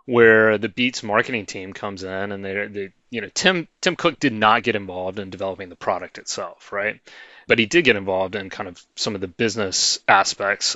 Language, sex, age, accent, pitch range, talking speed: English, male, 30-49, American, 95-115 Hz, 205 wpm